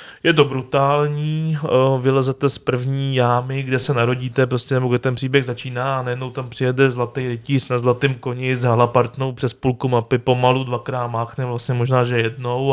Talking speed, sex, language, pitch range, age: 175 wpm, male, Czech, 120-135 Hz, 20-39